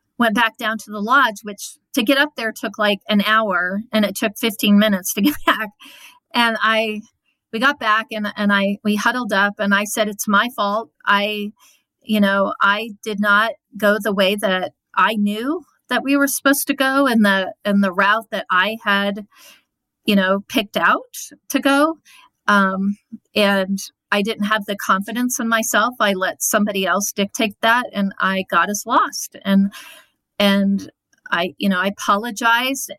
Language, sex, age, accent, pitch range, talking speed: English, female, 40-59, American, 200-245 Hz, 180 wpm